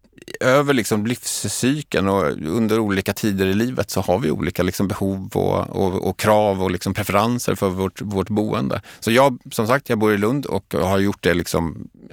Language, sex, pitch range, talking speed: Swedish, male, 90-110 Hz, 195 wpm